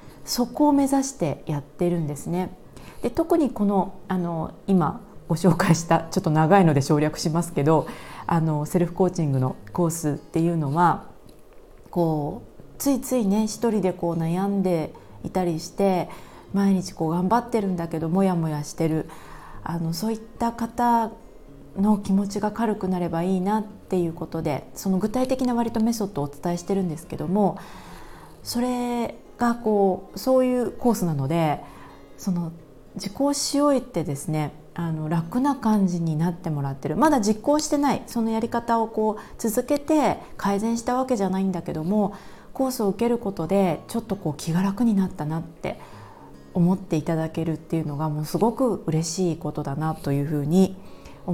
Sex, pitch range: female, 160-225 Hz